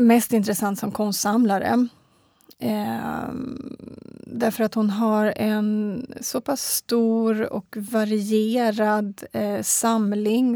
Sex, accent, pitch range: female, native, 215-240 Hz